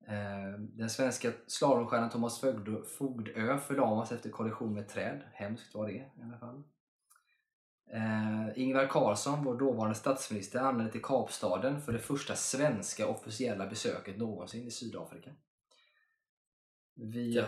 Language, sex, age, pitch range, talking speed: Swedish, male, 20-39, 105-125 Hz, 115 wpm